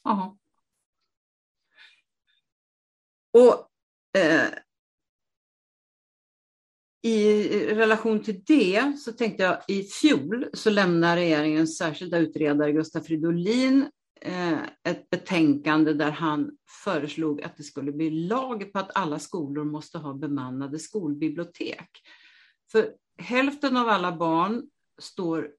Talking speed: 105 wpm